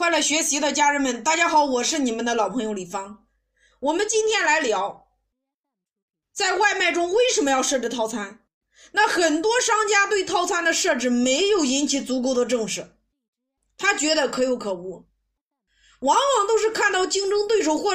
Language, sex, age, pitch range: Chinese, female, 20-39, 250-385 Hz